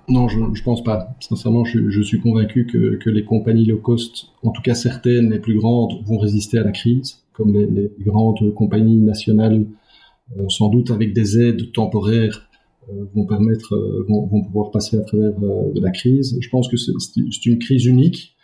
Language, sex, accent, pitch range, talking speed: French, male, French, 105-120 Hz, 205 wpm